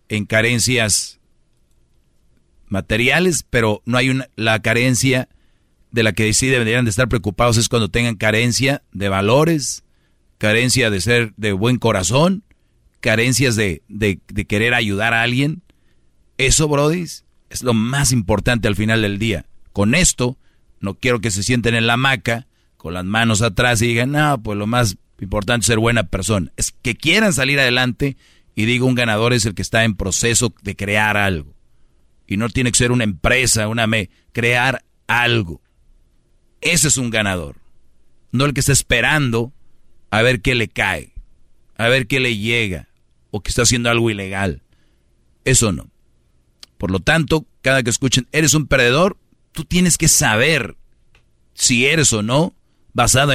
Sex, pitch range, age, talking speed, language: male, 100-130 Hz, 40-59, 165 wpm, Spanish